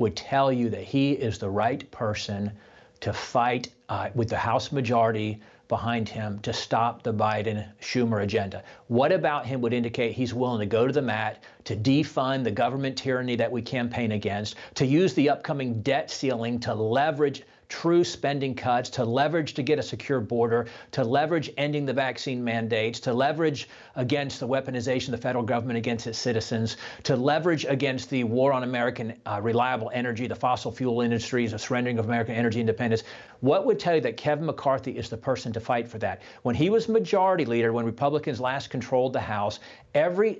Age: 40-59